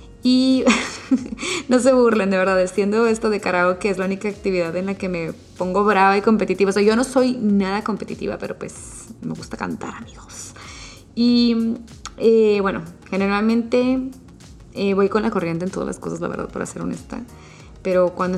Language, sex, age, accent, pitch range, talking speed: Spanish, female, 20-39, Mexican, 190-245 Hz, 180 wpm